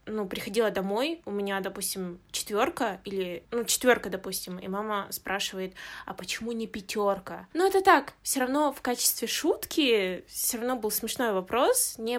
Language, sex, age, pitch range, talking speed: Russian, female, 20-39, 195-240 Hz, 160 wpm